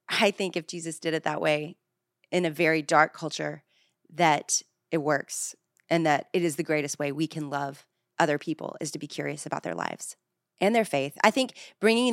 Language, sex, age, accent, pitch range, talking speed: English, female, 30-49, American, 155-180 Hz, 205 wpm